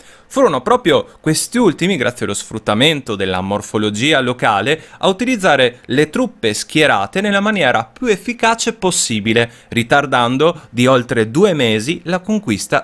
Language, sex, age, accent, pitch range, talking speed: Italian, male, 30-49, native, 115-185 Hz, 125 wpm